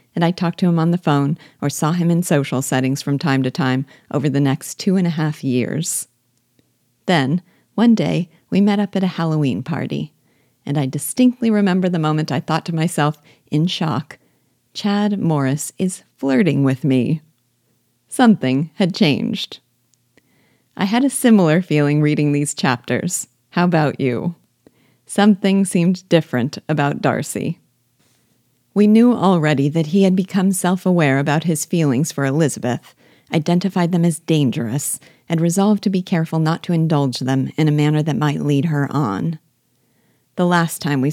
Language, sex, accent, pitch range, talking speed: English, female, American, 140-180 Hz, 160 wpm